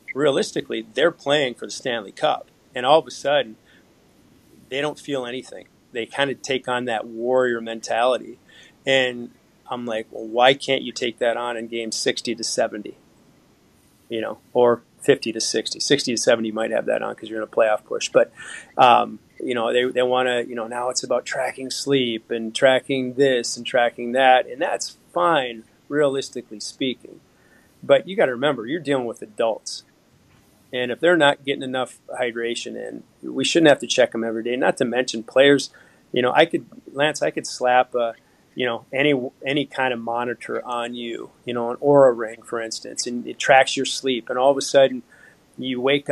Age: 30-49